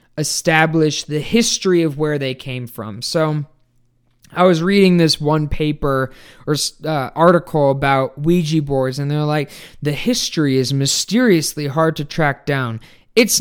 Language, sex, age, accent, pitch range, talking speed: English, male, 20-39, American, 135-175 Hz, 150 wpm